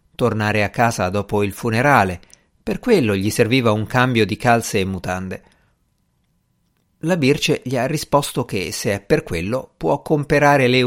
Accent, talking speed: native, 160 wpm